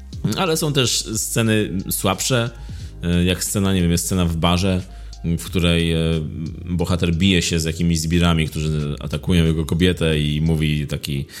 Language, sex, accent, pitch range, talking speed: Polish, male, native, 85-110 Hz, 145 wpm